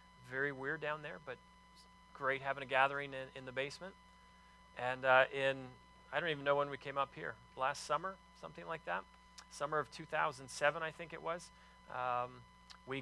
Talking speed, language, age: 180 wpm, English, 40-59